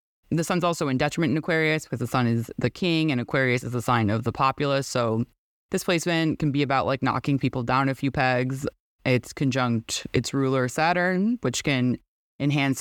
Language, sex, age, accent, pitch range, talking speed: English, female, 20-39, American, 125-150 Hz, 195 wpm